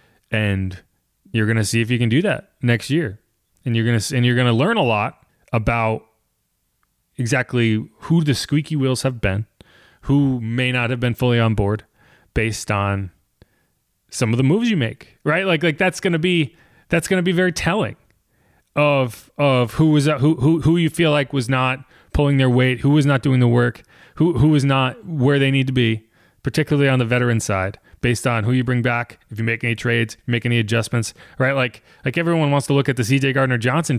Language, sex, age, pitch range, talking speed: English, male, 30-49, 115-140 Hz, 205 wpm